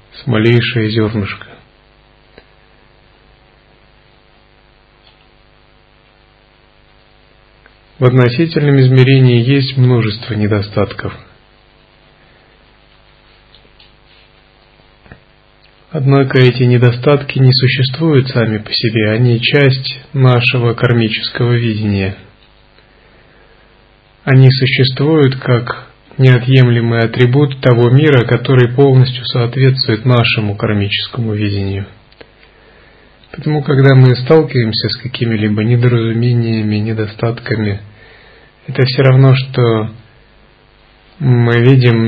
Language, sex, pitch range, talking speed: Russian, male, 110-130 Hz, 70 wpm